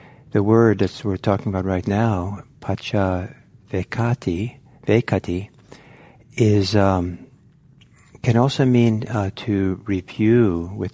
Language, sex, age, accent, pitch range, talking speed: English, male, 60-79, American, 95-125 Hz, 110 wpm